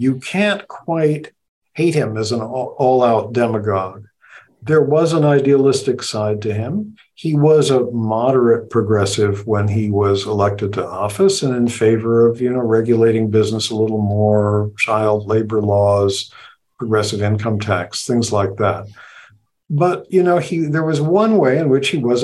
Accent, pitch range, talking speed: American, 110-150 Hz, 160 wpm